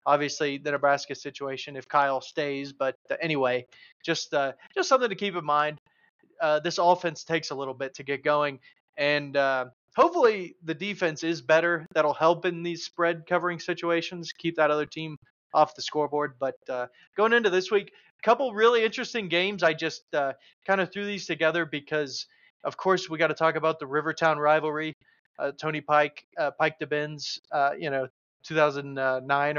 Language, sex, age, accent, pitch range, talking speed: English, male, 30-49, American, 140-175 Hz, 180 wpm